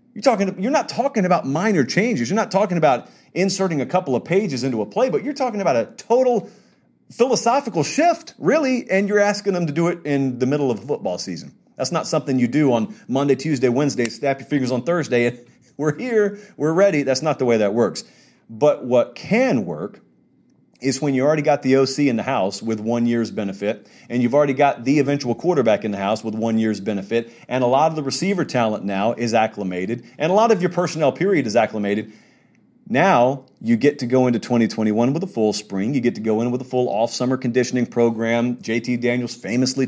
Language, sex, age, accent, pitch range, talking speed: English, male, 30-49, American, 115-160 Hz, 215 wpm